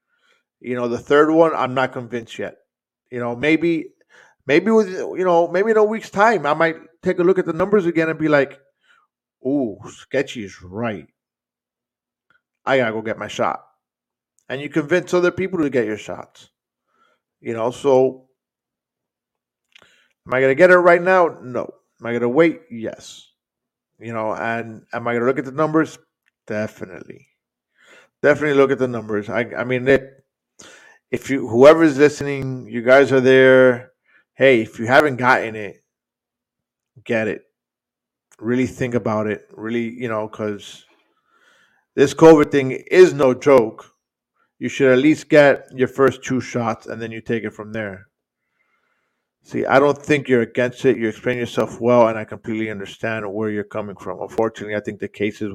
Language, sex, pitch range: English, male, 110-155 Hz